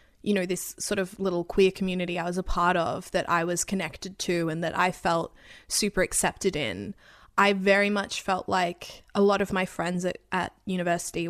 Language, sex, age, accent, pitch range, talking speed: English, female, 10-29, Australian, 175-205 Hz, 200 wpm